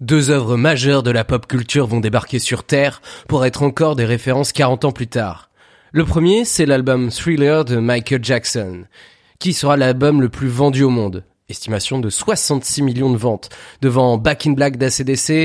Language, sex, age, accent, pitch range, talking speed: French, male, 30-49, French, 125-155 Hz, 185 wpm